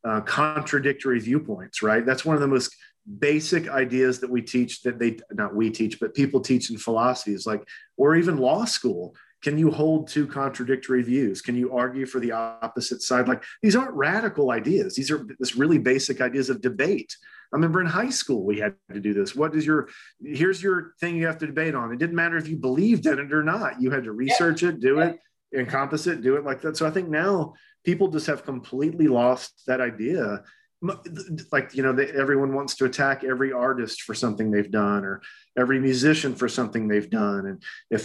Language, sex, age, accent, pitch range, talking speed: English, male, 40-59, American, 120-155 Hz, 210 wpm